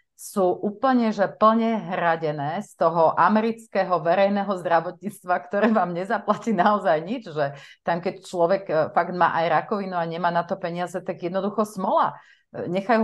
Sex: female